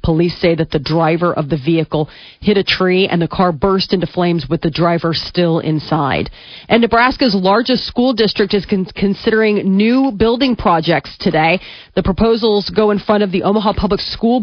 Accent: American